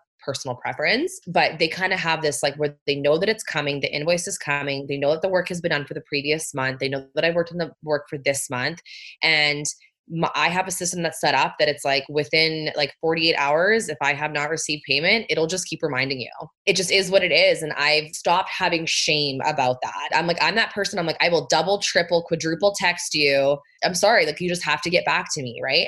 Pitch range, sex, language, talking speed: 150-190 Hz, female, English, 255 wpm